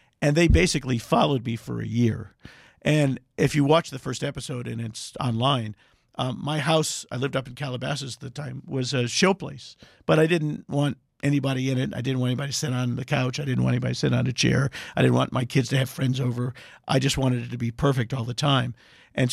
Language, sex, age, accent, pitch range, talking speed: English, male, 50-69, American, 120-145 Hz, 240 wpm